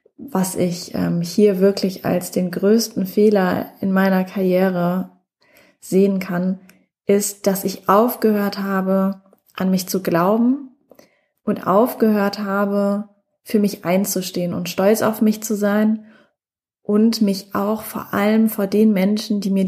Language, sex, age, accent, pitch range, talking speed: German, female, 20-39, German, 185-210 Hz, 135 wpm